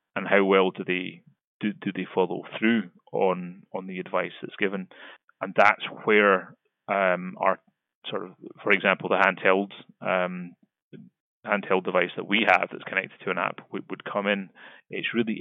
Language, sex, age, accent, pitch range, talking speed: English, male, 30-49, British, 95-105 Hz, 170 wpm